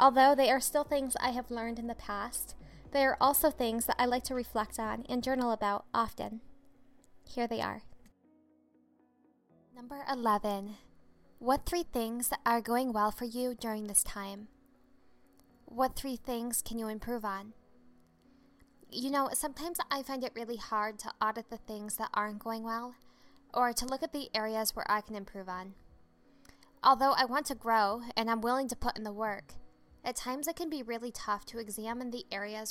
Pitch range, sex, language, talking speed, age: 210-255 Hz, female, English, 180 wpm, 10-29